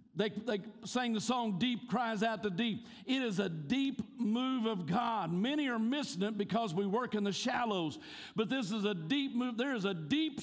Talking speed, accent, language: 215 wpm, American, English